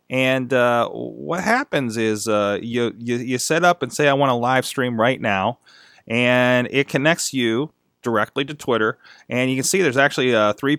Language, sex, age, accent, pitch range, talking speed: English, male, 30-49, American, 110-135 Hz, 195 wpm